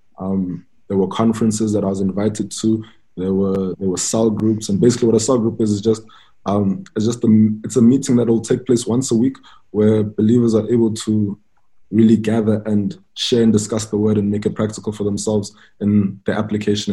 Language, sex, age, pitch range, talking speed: English, male, 20-39, 100-110 Hz, 215 wpm